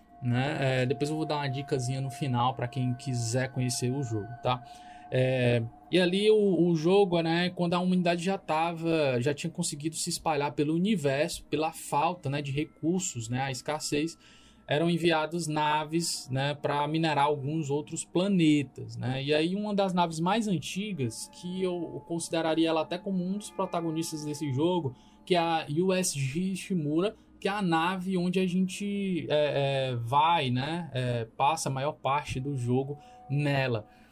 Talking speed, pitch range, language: 165 wpm, 135-175 Hz, Portuguese